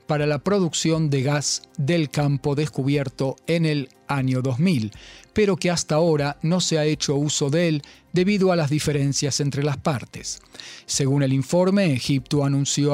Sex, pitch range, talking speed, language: male, 135-170 Hz, 160 wpm, Spanish